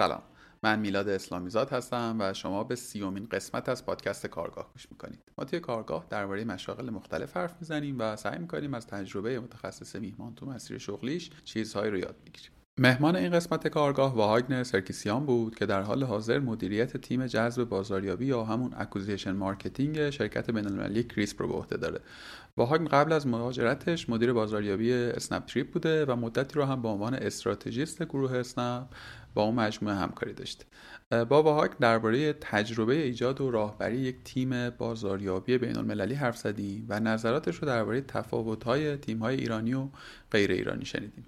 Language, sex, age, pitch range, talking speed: Persian, male, 30-49, 105-130 Hz, 160 wpm